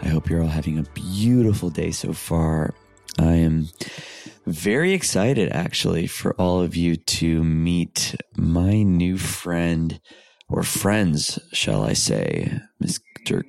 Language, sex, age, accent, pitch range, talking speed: English, male, 30-49, American, 80-95 Hz, 135 wpm